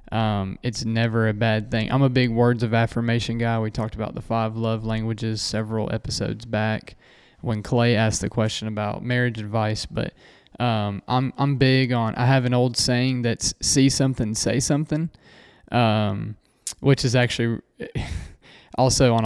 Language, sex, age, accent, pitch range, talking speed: English, male, 20-39, American, 110-125 Hz, 165 wpm